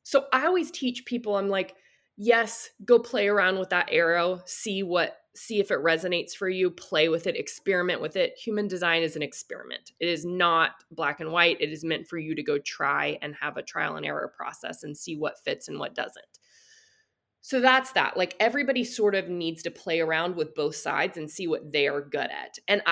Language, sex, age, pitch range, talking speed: English, female, 20-39, 165-230 Hz, 215 wpm